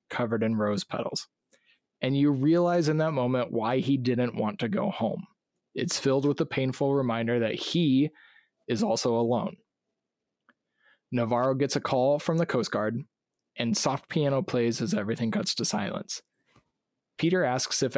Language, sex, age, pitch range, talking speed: English, male, 20-39, 120-150 Hz, 160 wpm